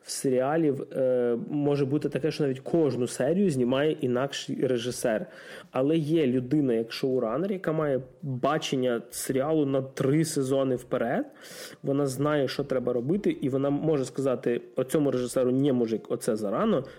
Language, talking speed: Russian, 150 wpm